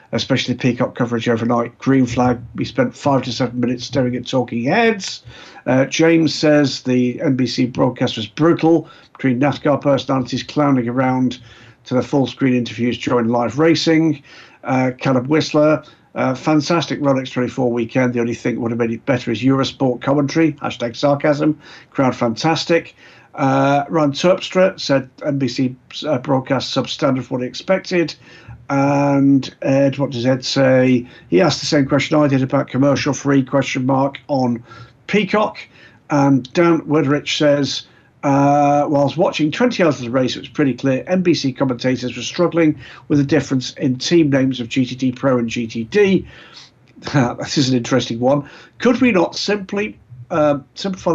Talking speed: 155 wpm